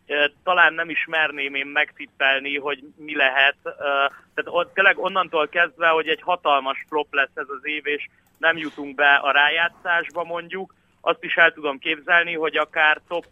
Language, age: Hungarian, 30-49